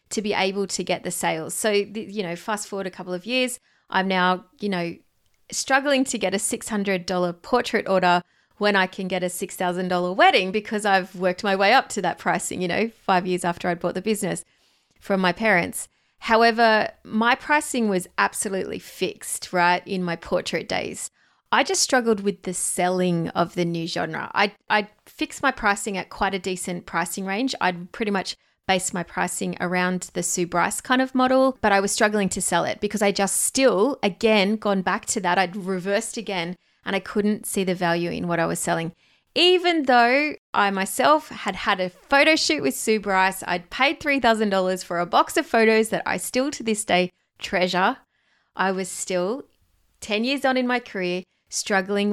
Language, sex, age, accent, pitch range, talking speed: English, female, 30-49, Australian, 180-220 Hz, 200 wpm